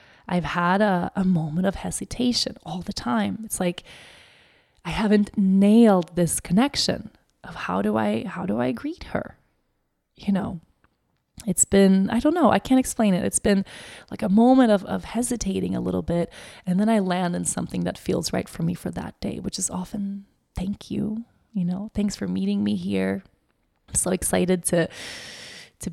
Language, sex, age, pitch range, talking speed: English, female, 20-39, 170-205 Hz, 185 wpm